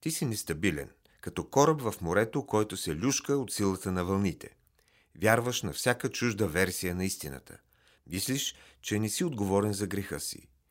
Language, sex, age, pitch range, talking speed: Bulgarian, male, 40-59, 95-130 Hz, 160 wpm